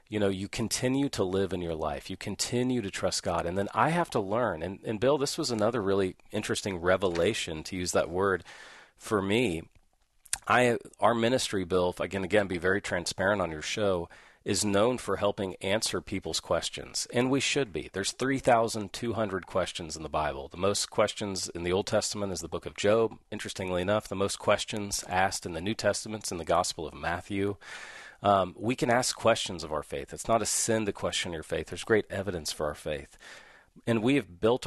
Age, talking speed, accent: 40-59, 205 wpm, American